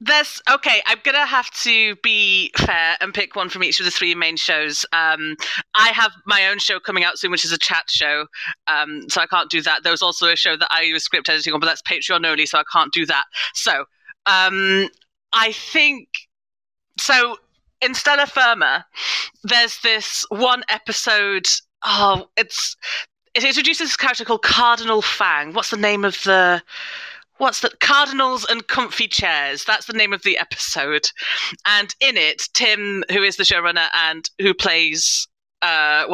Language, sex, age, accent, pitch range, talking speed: English, female, 30-49, British, 175-230 Hz, 180 wpm